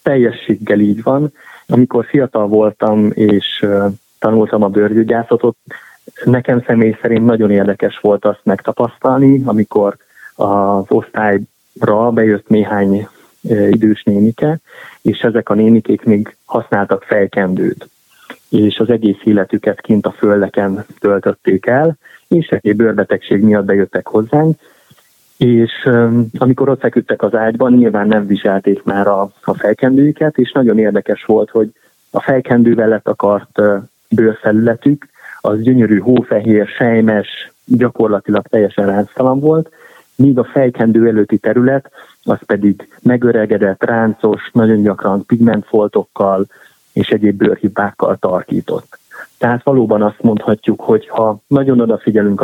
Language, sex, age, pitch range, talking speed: Hungarian, male, 20-39, 105-120 Hz, 120 wpm